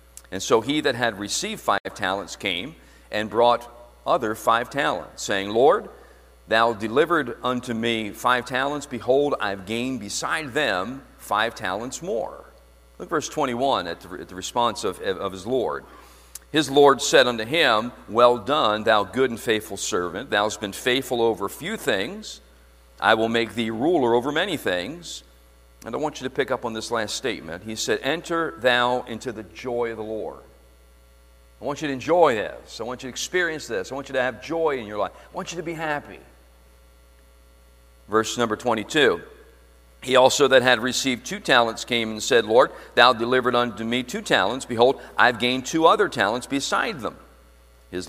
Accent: American